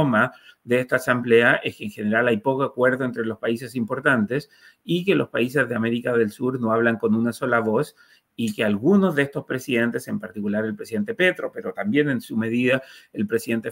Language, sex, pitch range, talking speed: Spanish, male, 115-135 Hz, 200 wpm